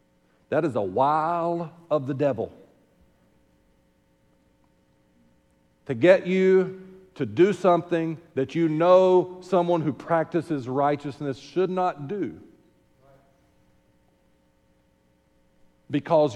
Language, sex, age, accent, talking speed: English, male, 50-69, American, 90 wpm